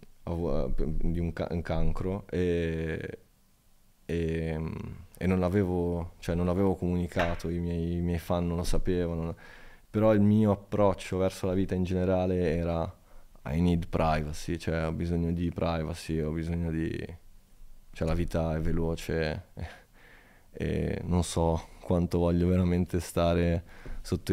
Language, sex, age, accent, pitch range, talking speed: Italian, male, 20-39, native, 85-95 Hz, 135 wpm